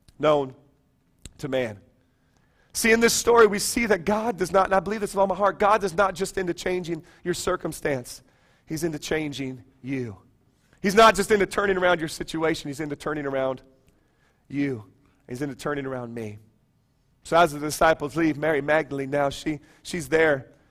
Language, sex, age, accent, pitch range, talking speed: English, male, 40-59, American, 155-225 Hz, 175 wpm